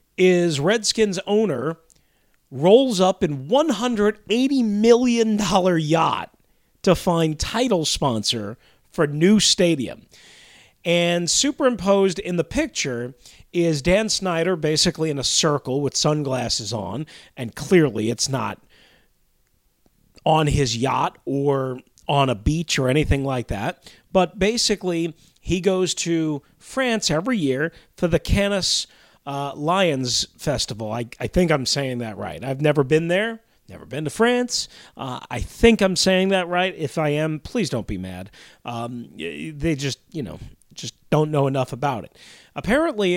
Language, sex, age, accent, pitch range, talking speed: English, male, 40-59, American, 130-185 Hz, 140 wpm